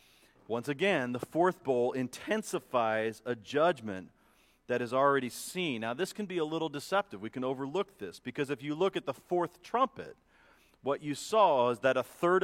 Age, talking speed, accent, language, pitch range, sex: 40-59, 185 wpm, American, English, 105-140 Hz, male